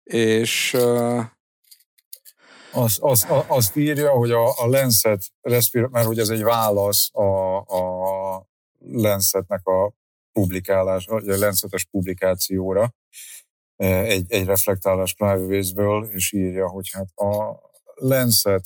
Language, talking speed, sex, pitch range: Hungarian, 105 wpm, male, 90-105 Hz